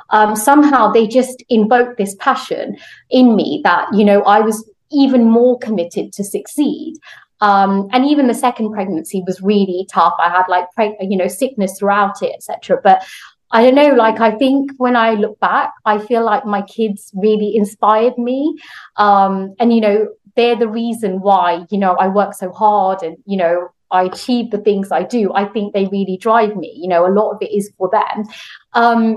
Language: English